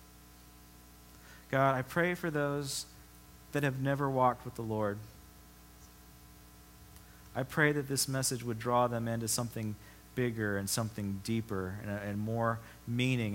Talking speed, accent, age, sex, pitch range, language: 135 wpm, American, 40-59, male, 95-130 Hz, English